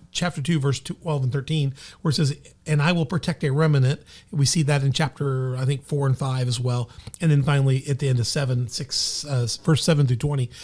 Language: English